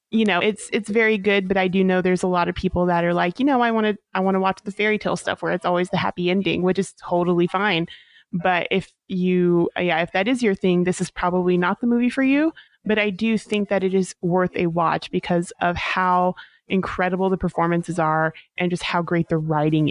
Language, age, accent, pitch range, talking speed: English, 30-49, American, 175-200 Hz, 245 wpm